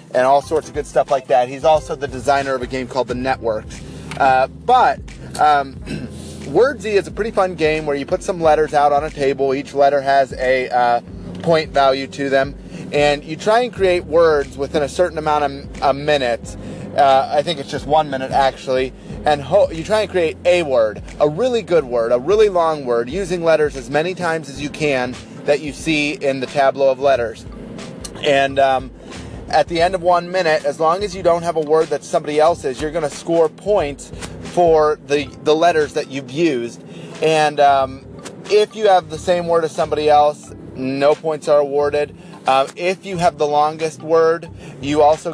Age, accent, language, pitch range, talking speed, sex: 30-49, American, English, 135-170 Hz, 200 wpm, male